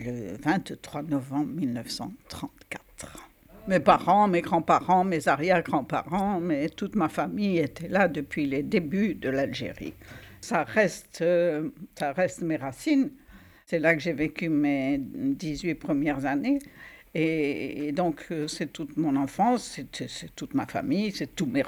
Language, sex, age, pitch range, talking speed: French, female, 60-79, 155-205 Hz, 145 wpm